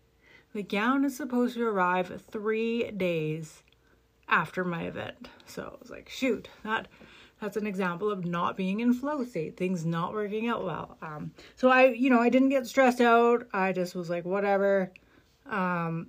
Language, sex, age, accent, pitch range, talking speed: English, female, 30-49, American, 175-225 Hz, 175 wpm